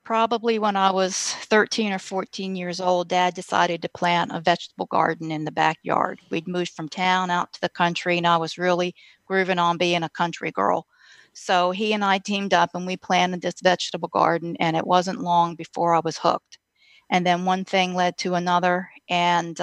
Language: English